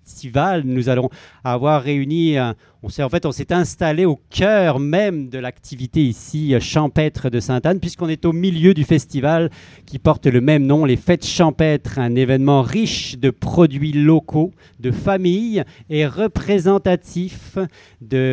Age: 40-59